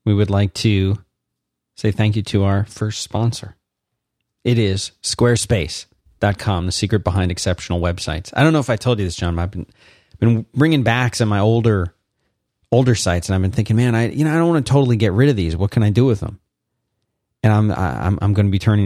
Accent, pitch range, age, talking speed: American, 100-120 Hz, 30-49, 225 wpm